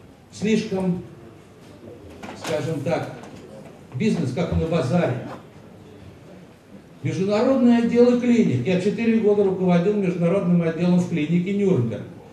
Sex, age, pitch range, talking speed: male, 60-79, 145-200 Hz, 95 wpm